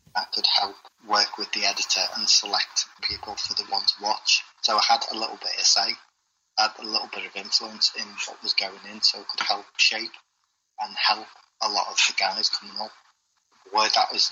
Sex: male